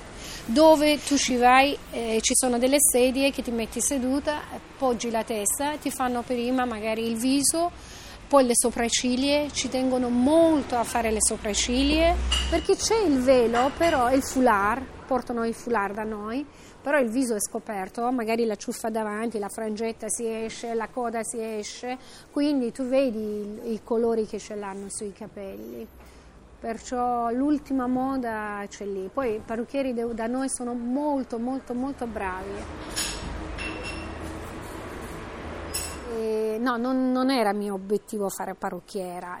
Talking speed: 145 wpm